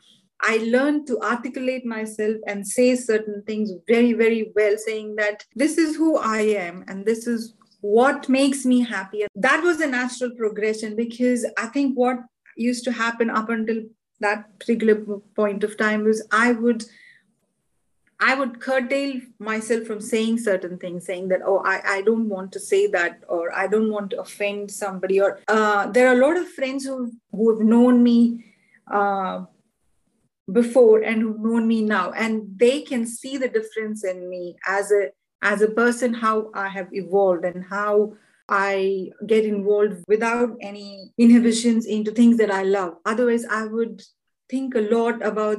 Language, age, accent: English, 30-49, Indian